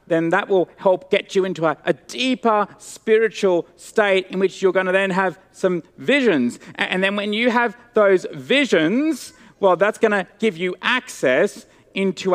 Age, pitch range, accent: 40-59, 170-225 Hz, Australian